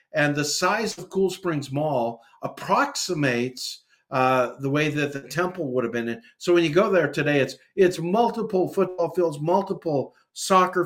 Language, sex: English, male